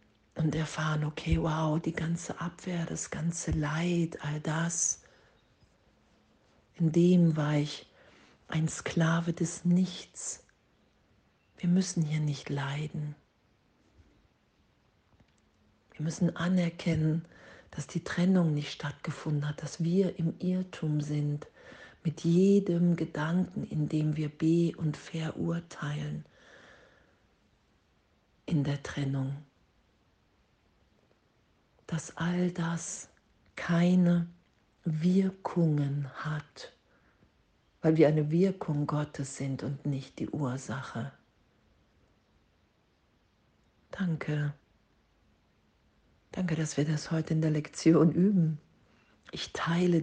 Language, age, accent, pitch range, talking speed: German, 50-69, German, 150-170 Hz, 95 wpm